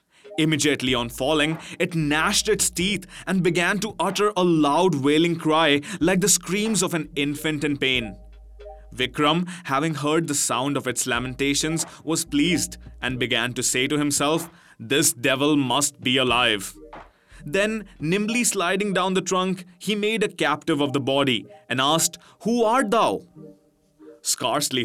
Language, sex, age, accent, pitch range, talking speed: English, male, 20-39, Indian, 135-175 Hz, 150 wpm